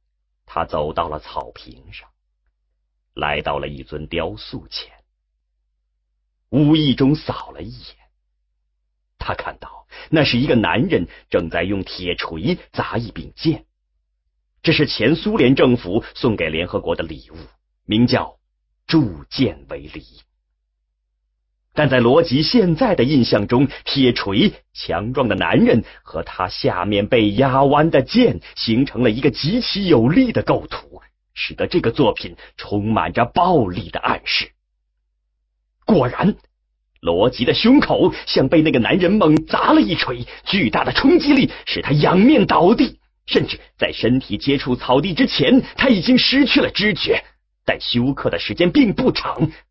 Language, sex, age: English, male, 30-49